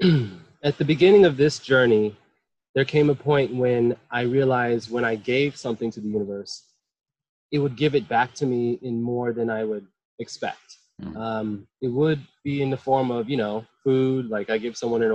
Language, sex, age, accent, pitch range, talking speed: English, male, 20-39, American, 115-140 Hz, 195 wpm